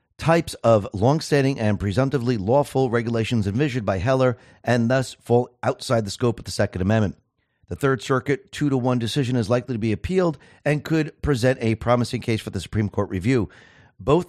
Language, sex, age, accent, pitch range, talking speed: English, male, 40-59, American, 110-135 Hz, 185 wpm